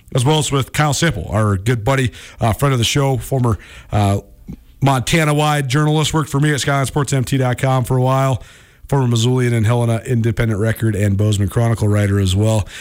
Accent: American